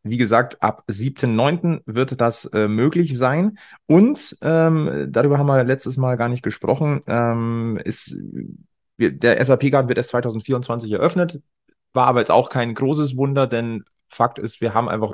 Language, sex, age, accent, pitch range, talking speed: German, male, 30-49, German, 100-125 Hz, 165 wpm